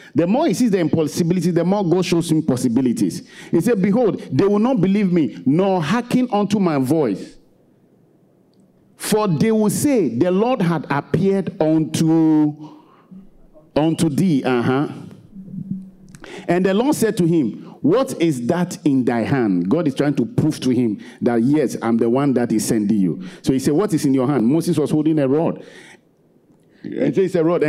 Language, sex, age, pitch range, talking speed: English, male, 50-69, 140-195 Hz, 170 wpm